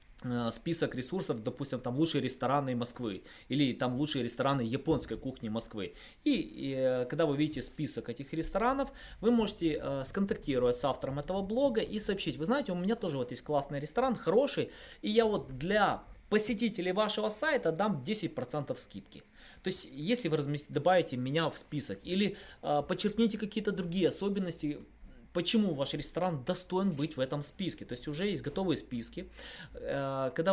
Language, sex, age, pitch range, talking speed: Russian, male, 20-39, 130-185 Hz, 160 wpm